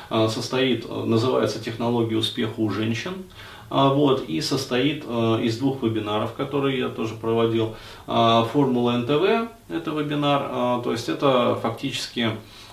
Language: Russian